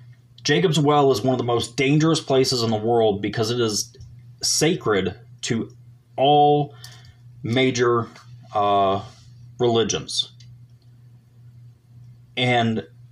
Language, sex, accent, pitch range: English, male, American, 120-125 Hz